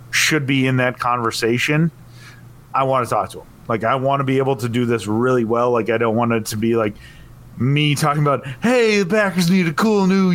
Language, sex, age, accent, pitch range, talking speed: English, male, 30-49, American, 120-140 Hz, 230 wpm